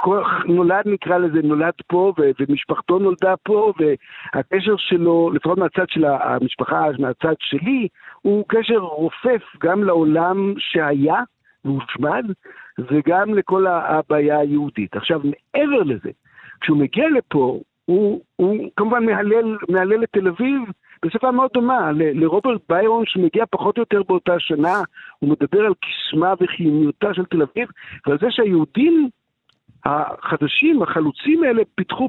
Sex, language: male, Hebrew